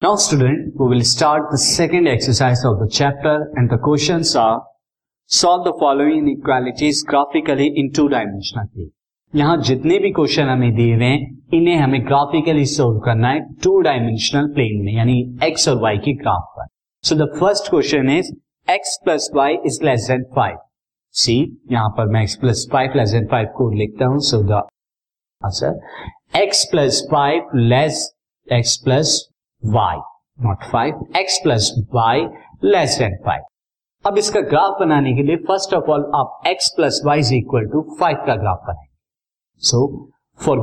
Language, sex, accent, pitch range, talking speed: Hindi, male, native, 120-150 Hz, 165 wpm